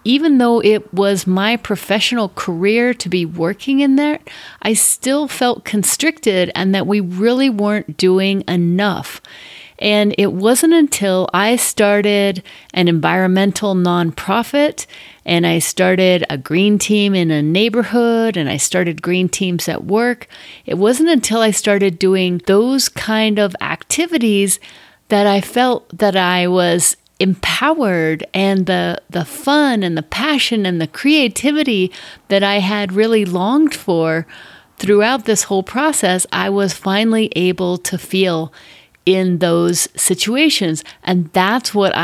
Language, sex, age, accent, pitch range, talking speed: English, female, 30-49, American, 180-220 Hz, 140 wpm